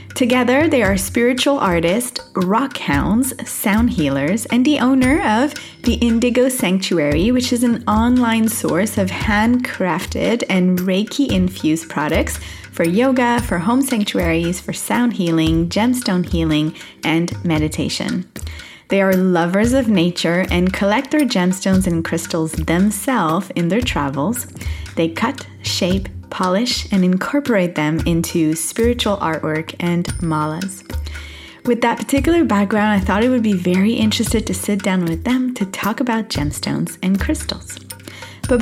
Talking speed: 140 wpm